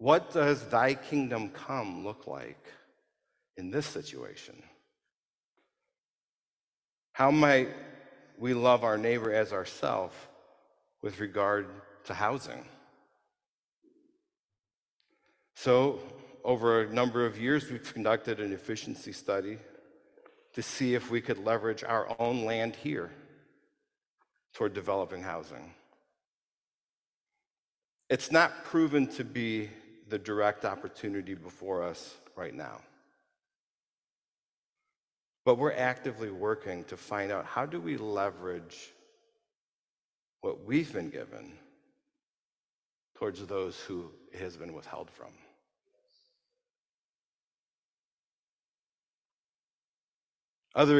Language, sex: English, male